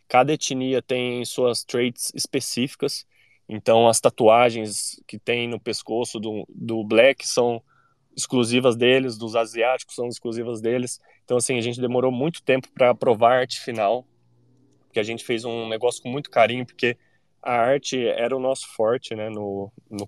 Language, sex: Portuguese, male